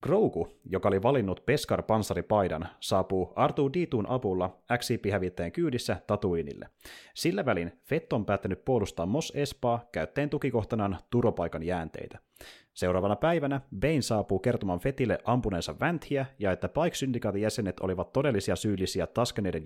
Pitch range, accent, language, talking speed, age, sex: 95-135 Hz, native, Finnish, 125 wpm, 30-49, male